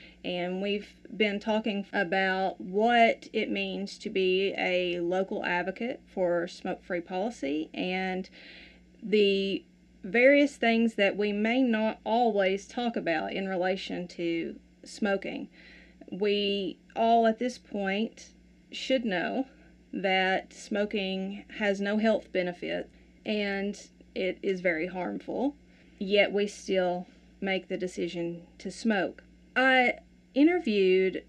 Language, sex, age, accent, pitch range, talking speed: English, female, 30-49, American, 185-220 Hz, 115 wpm